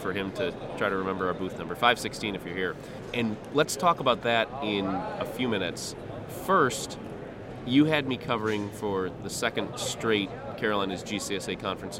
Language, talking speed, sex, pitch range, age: English, 170 wpm, male, 95-120 Hz, 30-49